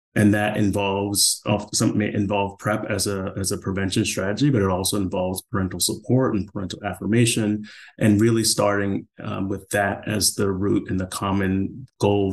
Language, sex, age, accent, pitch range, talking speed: English, male, 30-49, American, 95-105 Hz, 170 wpm